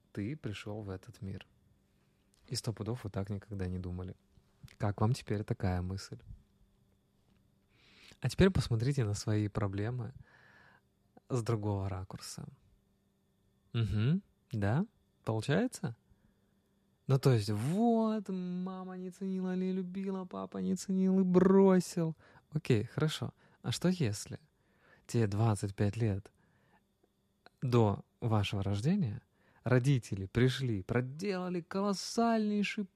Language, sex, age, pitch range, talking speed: Russian, male, 20-39, 105-155 Hz, 105 wpm